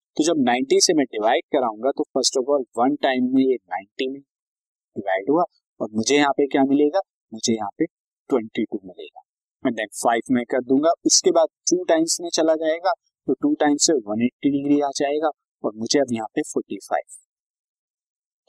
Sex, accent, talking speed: male, native, 190 wpm